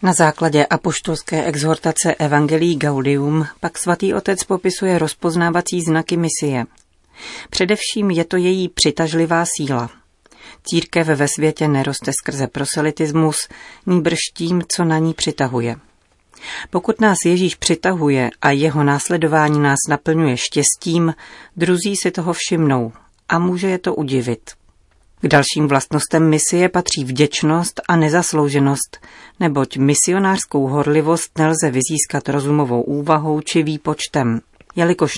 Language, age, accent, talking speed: Czech, 40-59, native, 115 wpm